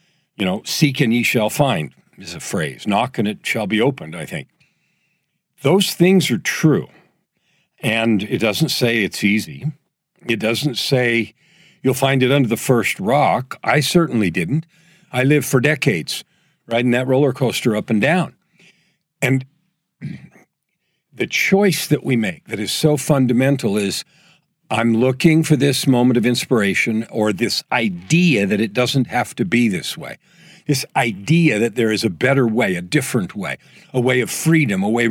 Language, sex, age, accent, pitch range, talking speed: English, male, 50-69, American, 120-165 Hz, 165 wpm